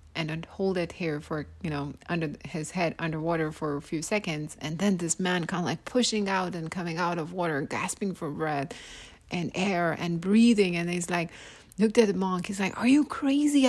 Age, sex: 30-49, female